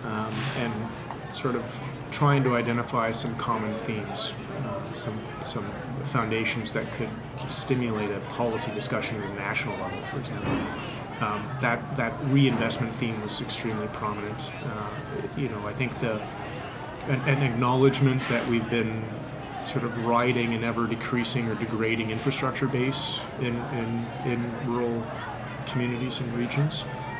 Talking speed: 140 wpm